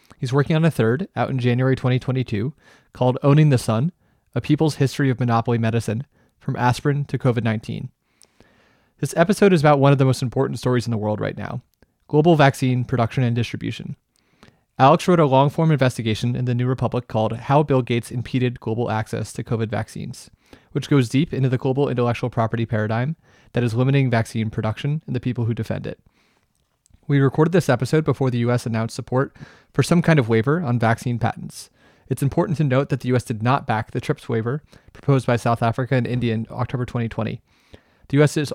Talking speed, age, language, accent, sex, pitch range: 195 wpm, 30-49, English, American, male, 115-140 Hz